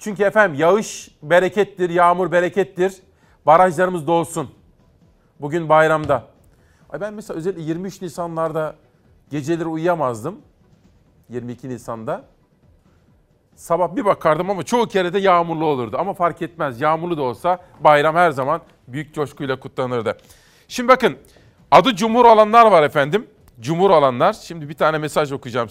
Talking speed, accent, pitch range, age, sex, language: 125 wpm, native, 145-190 Hz, 40-59, male, Turkish